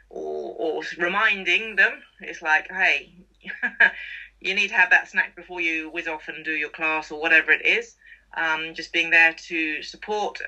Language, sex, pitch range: English, female, 160-195 Hz